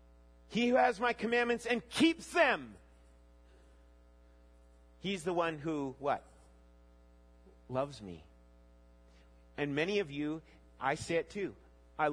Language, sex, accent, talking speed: English, male, American, 120 wpm